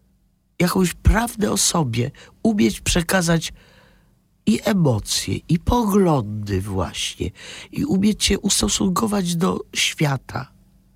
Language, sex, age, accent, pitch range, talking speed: Polish, male, 50-69, native, 115-180 Hz, 95 wpm